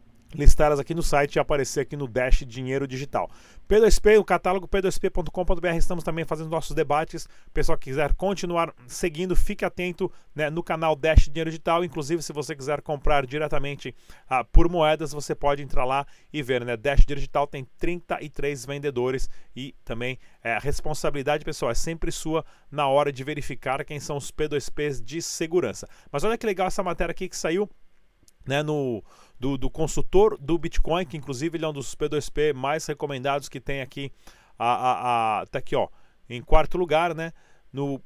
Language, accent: Portuguese, Brazilian